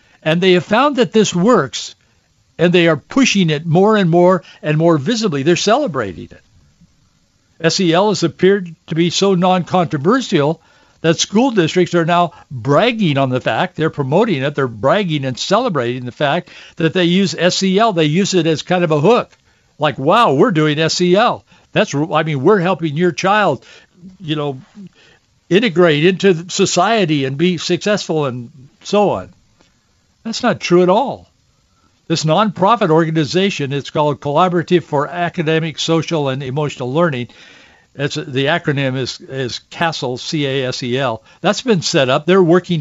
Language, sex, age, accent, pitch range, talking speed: English, male, 60-79, American, 150-190 Hz, 155 wpm